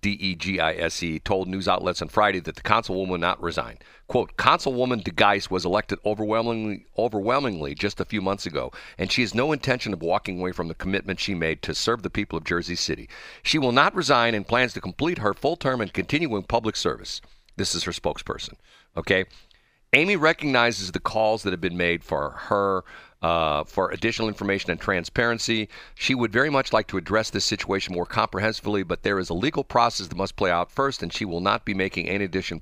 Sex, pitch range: male, 90-115 Hz